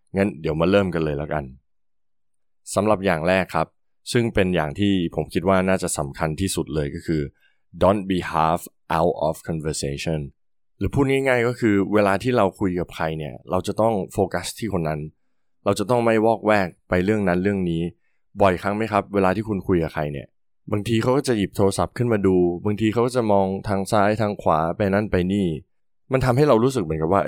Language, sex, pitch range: Thai, male, 85-105 Hz